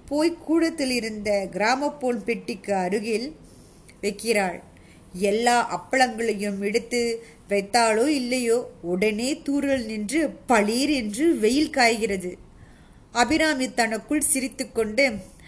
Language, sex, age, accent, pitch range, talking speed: Tamil, female, 20-39, native, 205-270 Hz, 95 wpm